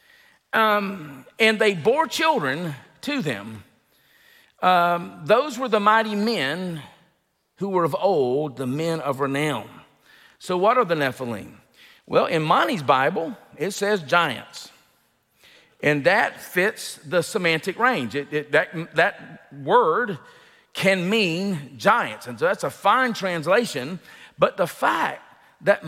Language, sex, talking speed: English, male, 130 wpm